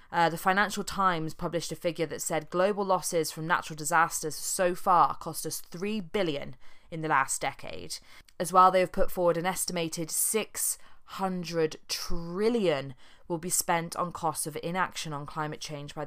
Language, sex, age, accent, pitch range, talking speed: English, female, 20-39, British, 155-190 Hz, 170 wpm